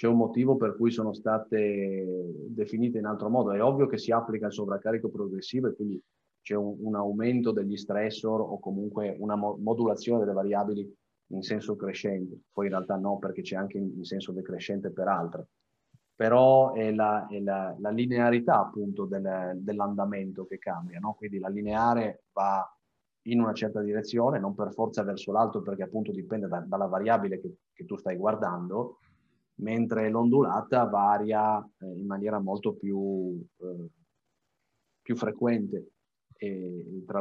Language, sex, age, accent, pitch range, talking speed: Italian, male, 30-49, native, 100-115 Hz, 155 wpm